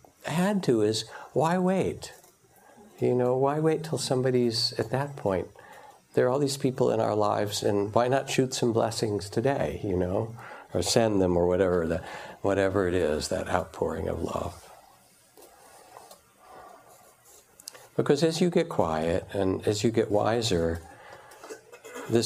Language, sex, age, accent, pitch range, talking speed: English, male, 60-79, American, 90-115 Hz, 150 wpm